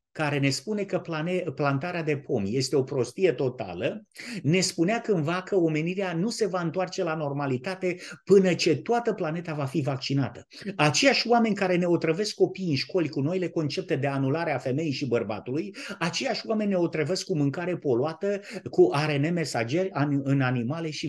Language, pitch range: Romanian, 140-185 Hz